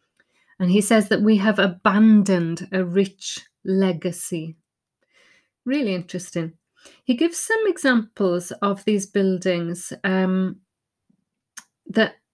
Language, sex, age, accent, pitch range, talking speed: English, female, 30-49, British, 185-220 Hz, 100 wpm